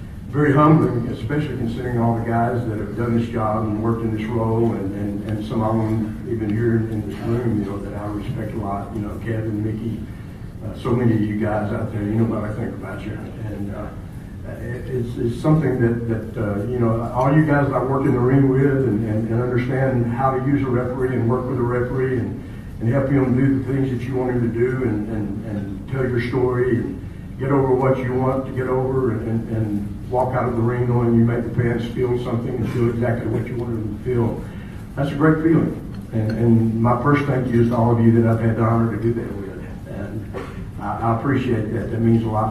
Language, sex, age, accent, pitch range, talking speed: English, male, 60-79, American, 105-125 Hz, 245 wpm